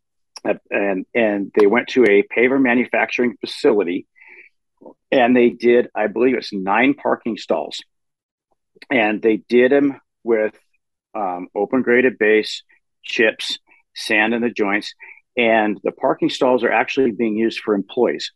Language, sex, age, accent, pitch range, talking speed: English, male, 50-69, American, 100-125 Hz, 140 wpm